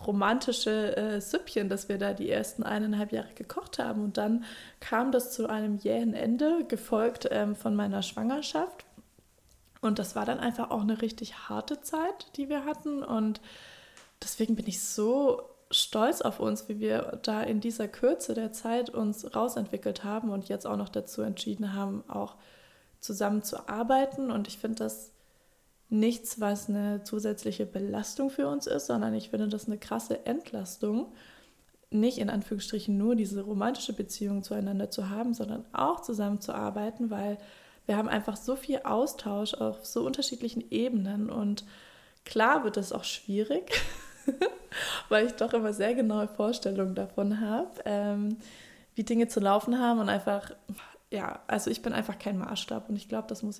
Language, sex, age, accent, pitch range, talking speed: German, female, 20-39, German, 205-240 Hz, 160 wpm